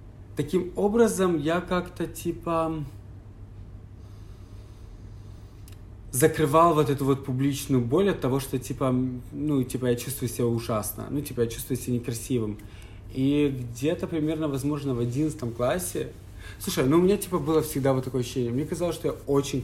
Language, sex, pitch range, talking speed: Ukrainian, male, 105-140 Hz, 150 wpm